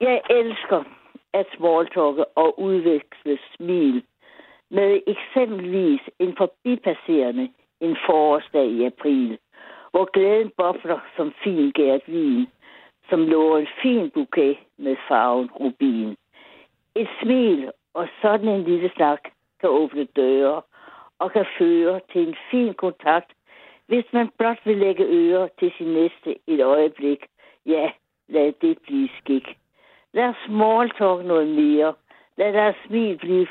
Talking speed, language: 125 wpm, Danish